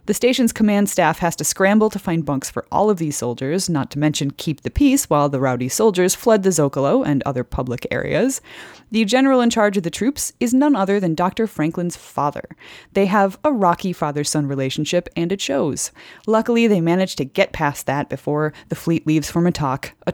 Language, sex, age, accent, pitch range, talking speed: English, female, 30-49, American, 145-205 Hz, 205 wpm